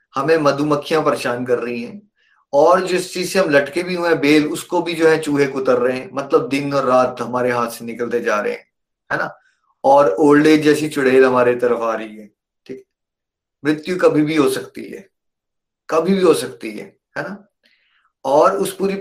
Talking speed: 200 wpm